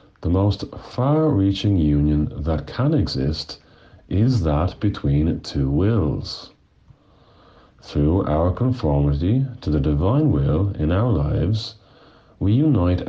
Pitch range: 75-110 Hz